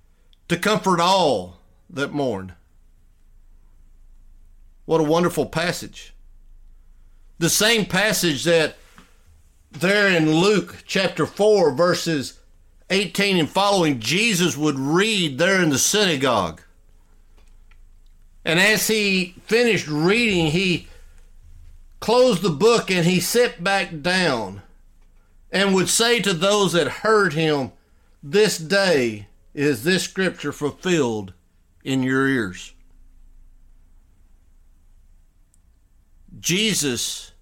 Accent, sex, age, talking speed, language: American, male, 50-69, 100 wpm, English